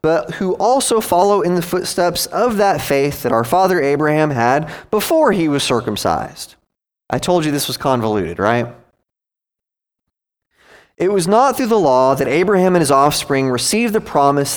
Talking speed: 165 wpm